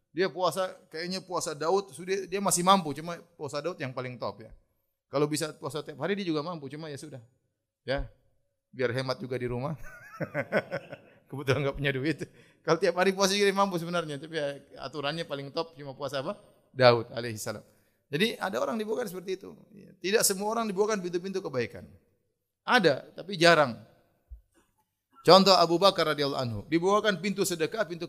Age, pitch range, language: 30-49, 130-185 Hz, Indonesian